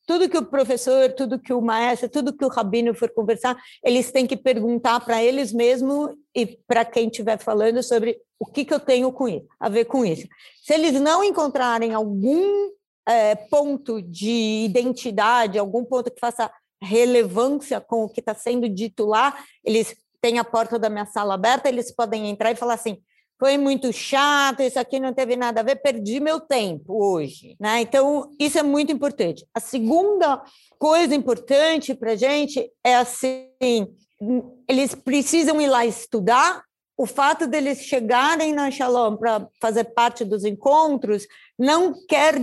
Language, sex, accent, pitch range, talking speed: Portuguese, female, Brazilian, 225-275 Hz, 170 wpm